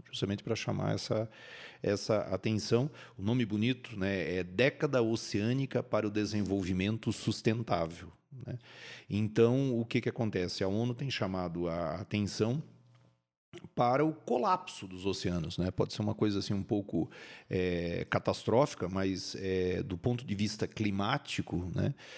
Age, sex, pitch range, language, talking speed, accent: 40-59, male, 95-115 Hz, Portuguese, 140 wpm, Brazilian